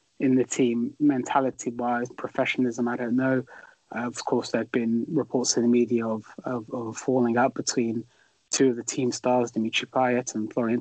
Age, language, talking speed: 20-39, English, 185 wpm